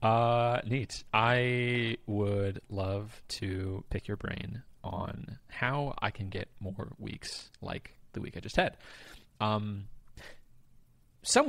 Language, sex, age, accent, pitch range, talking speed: English, male, 20-39, American, 105-145 Hz, 125 wpm